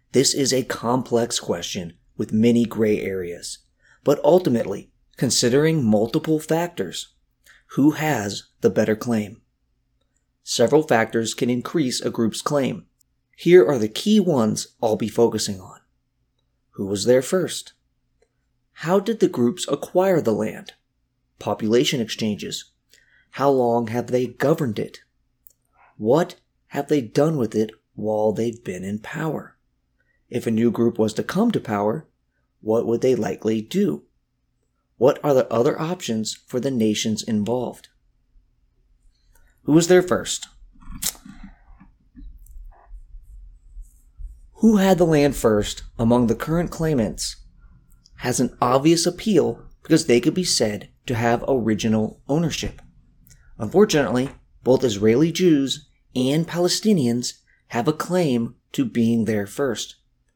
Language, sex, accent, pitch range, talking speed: English, male, American, 110-150 Hz, 125 wpm